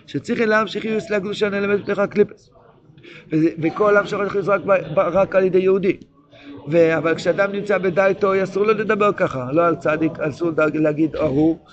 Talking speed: 180 wpm